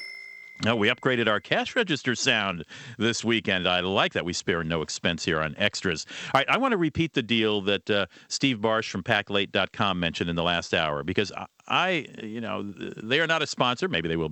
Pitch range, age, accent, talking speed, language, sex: 95-125 Hz, 50-69, American, 210 wpm, English, male